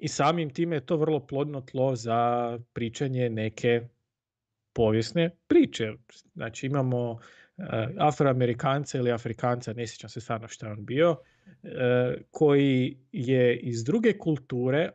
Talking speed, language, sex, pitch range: 120 wpm, Croatian, male, 120-150 Hz